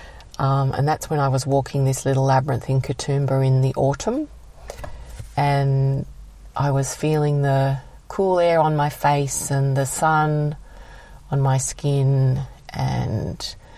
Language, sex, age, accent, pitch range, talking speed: English, female, 40-59, Australian, 135-155 Hz, 140 wpm